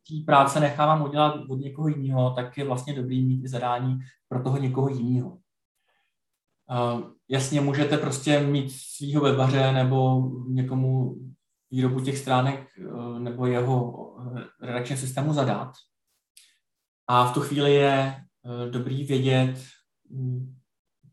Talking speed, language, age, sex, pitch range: 130 wpm, Czech, 20-39, male, 130-155 Hz